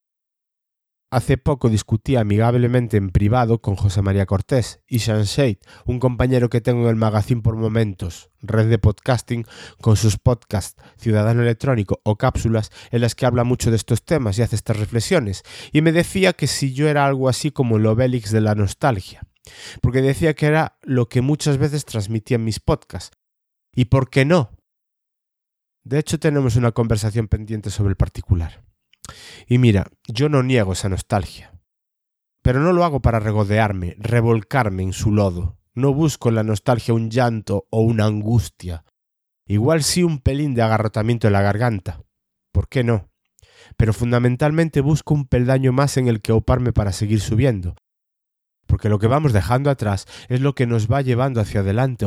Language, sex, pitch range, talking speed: Spanish, male, 105-130 Hz, 175 wpm